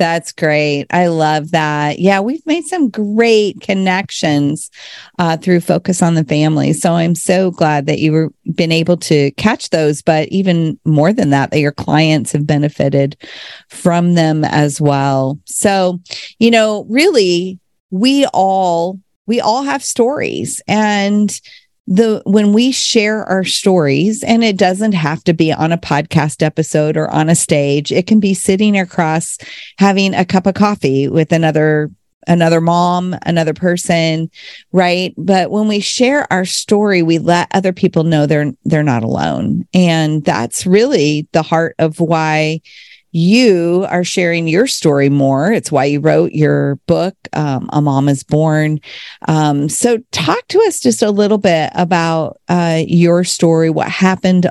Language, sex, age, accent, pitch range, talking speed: English, female, 40-59, American, 155-195 Hz, 160 wpm